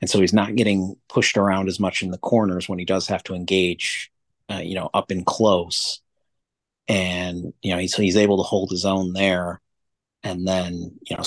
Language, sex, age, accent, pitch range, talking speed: English, male, 30-49, American, 90-100 Hz, 210 wpm